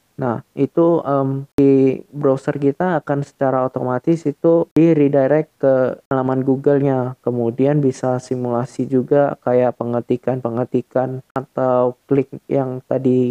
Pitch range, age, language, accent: 130-150 Hz, 20-39, Indonesian, native